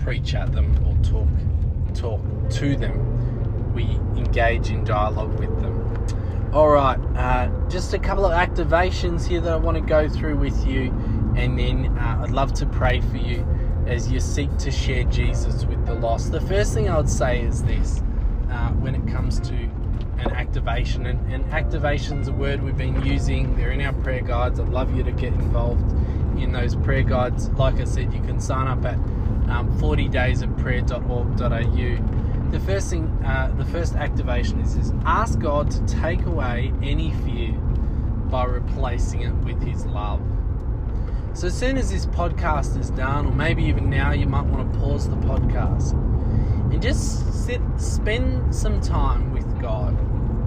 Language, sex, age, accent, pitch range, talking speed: English, male, 20-39, Australian, 75-110 Hz, 175 wpm